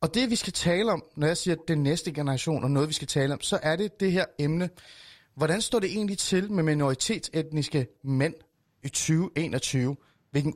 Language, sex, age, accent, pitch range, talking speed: Danish, male, 30-49, native, 140-195 Hz, 200 wpm